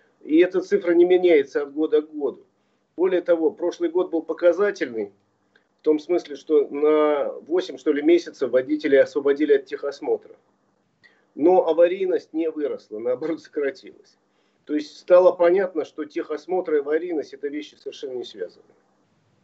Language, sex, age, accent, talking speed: Russian, male, 40-59, native, 145 wpm